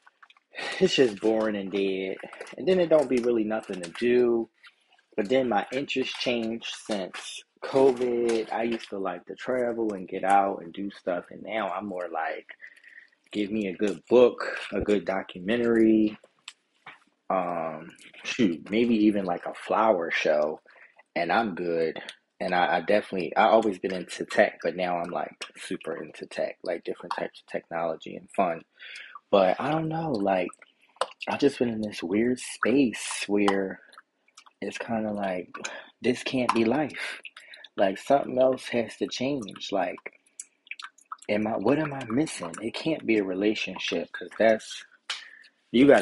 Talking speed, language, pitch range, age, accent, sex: 160 wpm, English, 100-125 Hz, 20-39, American, male